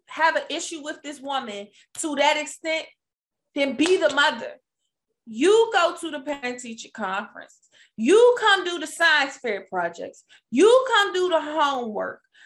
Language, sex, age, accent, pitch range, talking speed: English, female, 20-39, American, 245-340 Hz, 155 wpm